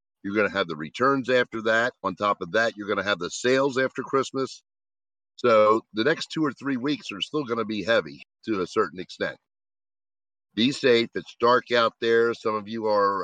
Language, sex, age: English, male, 50-69